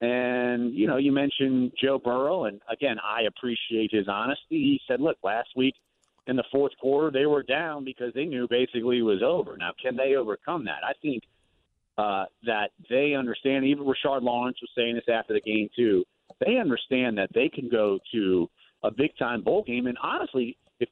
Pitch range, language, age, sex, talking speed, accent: 115-140 Hz, English, 50-69, male, 190 wpm, American